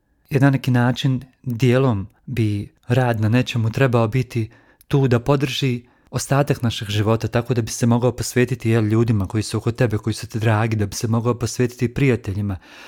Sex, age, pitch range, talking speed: male, 40-59, 115-135 Hz, 180 wpm